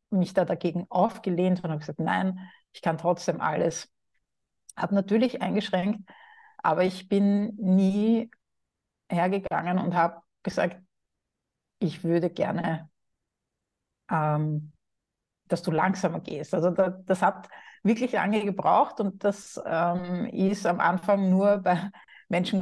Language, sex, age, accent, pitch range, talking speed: German, female, 50-69, Austrian, 165-190 Hz, 125 wpm